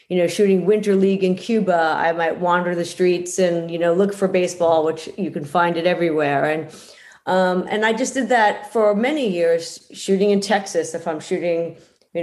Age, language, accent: 40-59, English, American